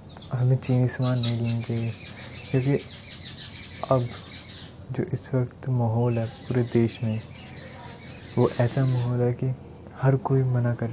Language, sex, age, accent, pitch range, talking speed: Hindi, male, 20-39, native, 105-130 Hz, 135 wpm